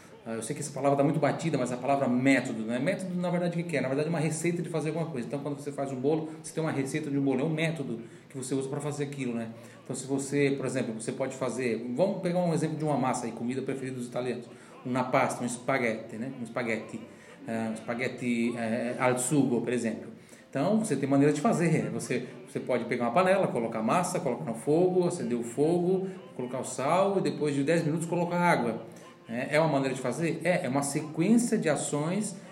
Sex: male